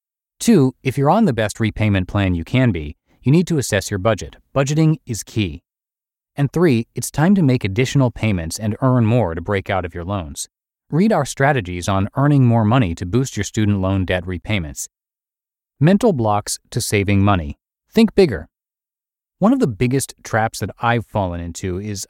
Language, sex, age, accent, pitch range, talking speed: English, male, 30-49, American, 100-135 Hz, 185 wpm